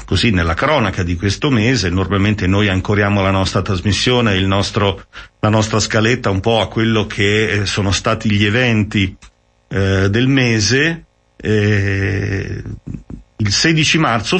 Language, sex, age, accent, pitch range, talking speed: Italian, male, 40-59, native, 95-115 Hz, 135 wpm